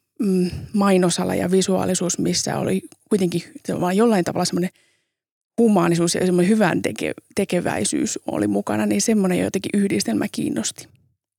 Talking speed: 110 wpm